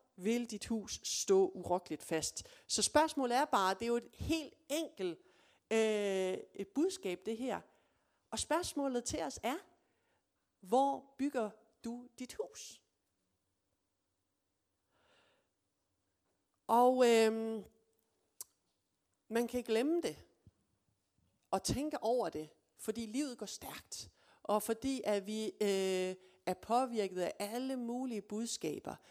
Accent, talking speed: native, 115 wpm